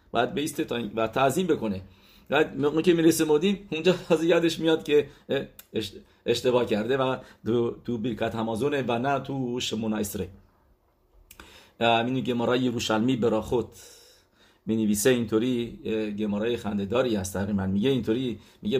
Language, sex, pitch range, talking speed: English, male, 110-140 Hz, 130 wpm